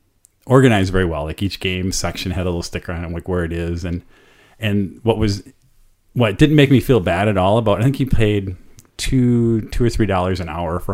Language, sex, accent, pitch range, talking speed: English, male, American, 95-110 Hz, 230 wpm